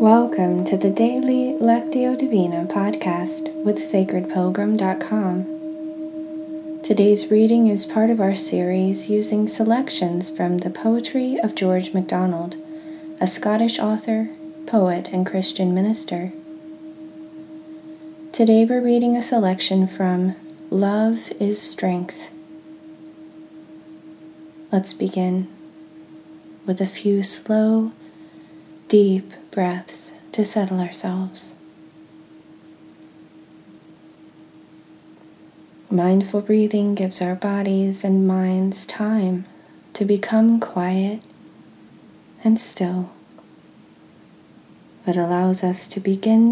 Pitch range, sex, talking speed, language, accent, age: 180-240 Hz, female, 90 wpm, English, American, 20-39